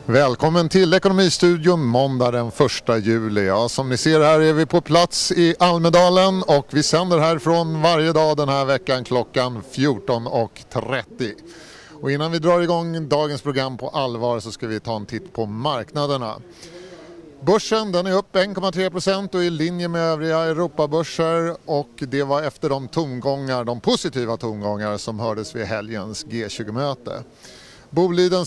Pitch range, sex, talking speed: 125-170 Hz, male, 155 wpm